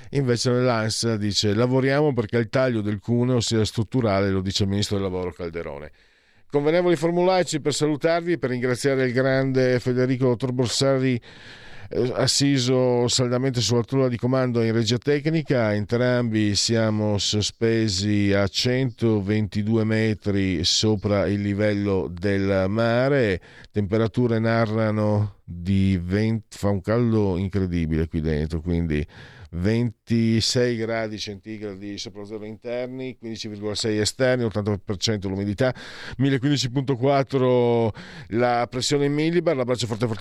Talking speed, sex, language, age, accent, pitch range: 115 wpm, male, Italian, 50-69, native, 105-130 Hz